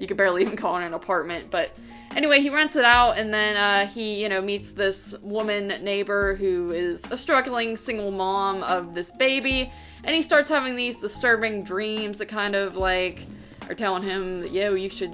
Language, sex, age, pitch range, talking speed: English, female, 20-39, 190-245 Hz, 200 wpm